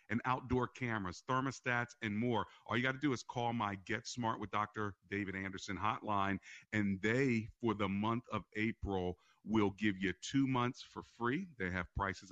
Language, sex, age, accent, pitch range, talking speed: English, male, 50-69, American, 95-115 Hz, 185 wpm